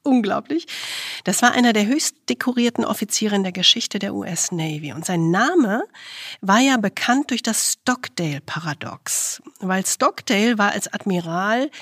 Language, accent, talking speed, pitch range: German, German, 135 wpm, 185-230 Hz